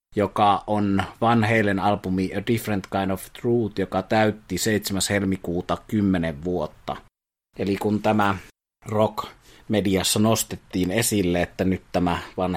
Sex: male